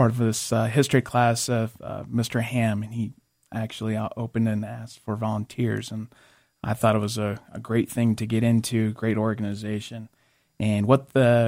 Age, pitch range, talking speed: 30-49, 110-125 Hz, 190 wpm